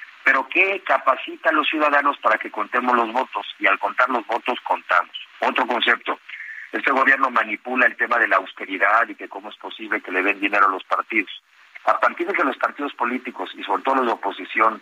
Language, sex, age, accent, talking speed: Spanish, male, 50-69, Mexican, 210 wpm